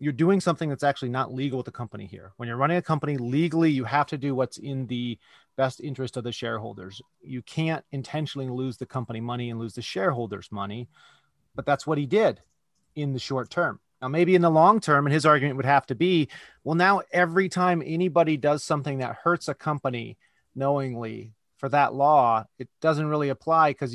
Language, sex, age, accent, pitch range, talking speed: English, male, 30-49, American, 125-165 Hz, 210 wpm